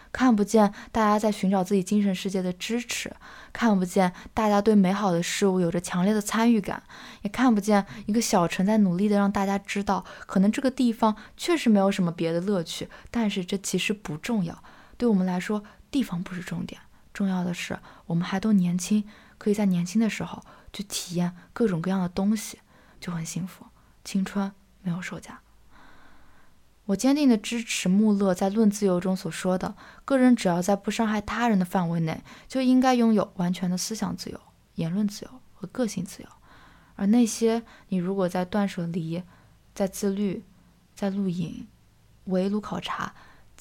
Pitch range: 185-225 Hz